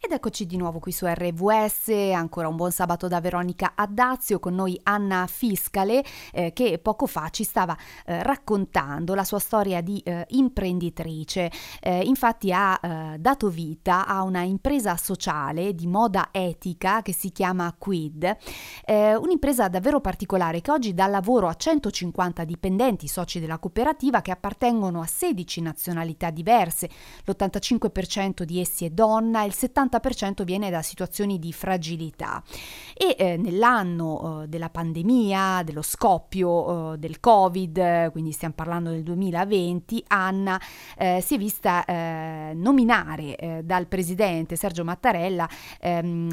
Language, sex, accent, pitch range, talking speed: Italian, female, native, 170-205 Hz, 145 wpm